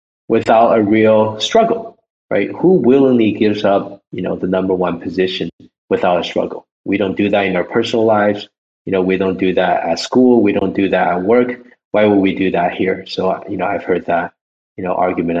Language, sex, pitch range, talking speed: English, male, 90-110 Hz, 215 wpm